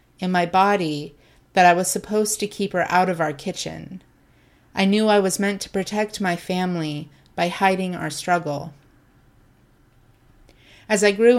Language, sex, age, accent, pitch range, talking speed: English, female, 30-49, American, 165-195 Hz, 160 wpm